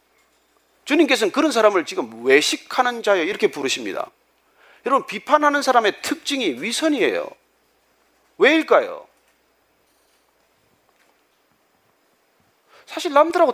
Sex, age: male, 40-59